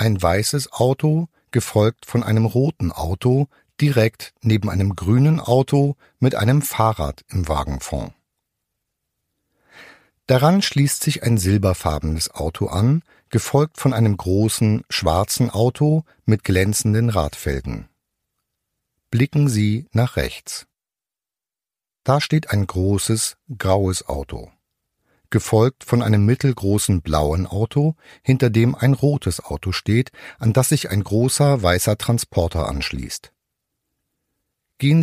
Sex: male